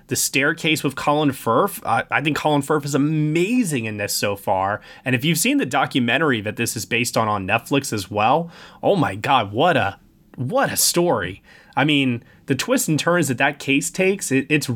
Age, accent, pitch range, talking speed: 20-39, American, 115-150 Hz, 200 wpm